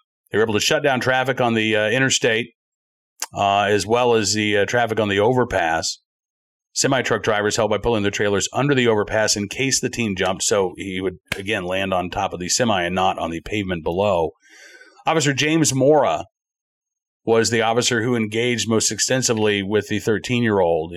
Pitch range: 105-130 Hz